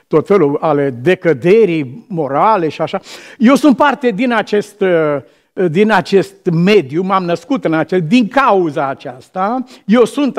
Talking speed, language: 140 wpm, Romanian